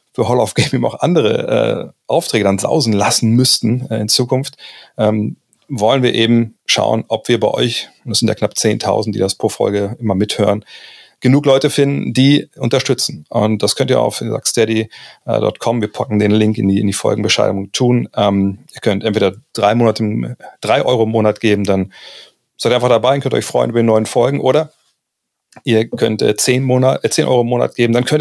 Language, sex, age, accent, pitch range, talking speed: German, male, 40-59, German, 105-125 Hz, 195 wpm